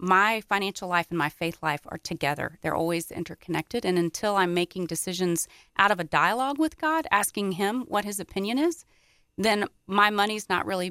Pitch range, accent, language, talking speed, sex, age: 170-205 Hz, American, English, 185 wpm, female, 30-49